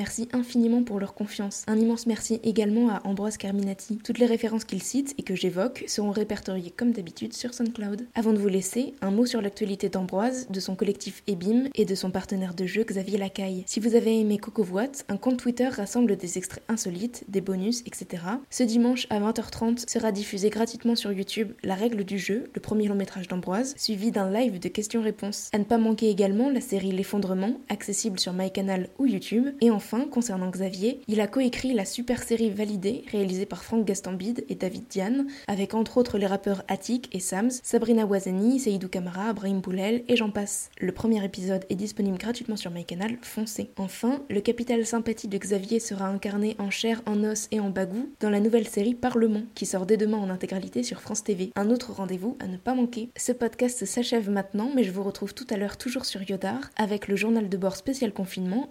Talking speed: 200 wpm